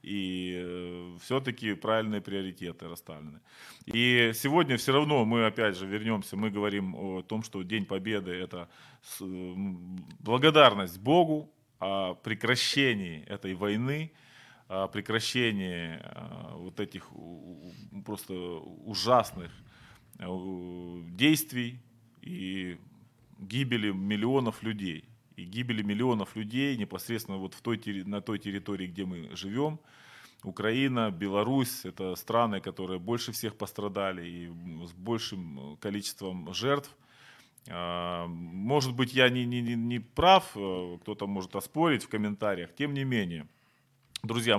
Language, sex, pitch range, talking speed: Ukrainian, male, 95-120 Hz, 105 wpm